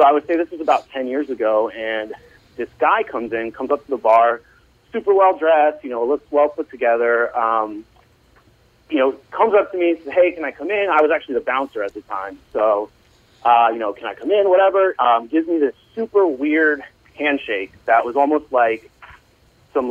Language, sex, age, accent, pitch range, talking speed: English, male, 30-49, American, 115-155 Hz, 215 wpm